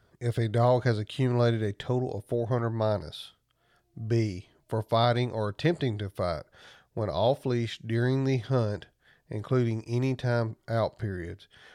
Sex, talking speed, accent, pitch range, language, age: male, 145 wpm, American, 105-120 Hz, English, 40-59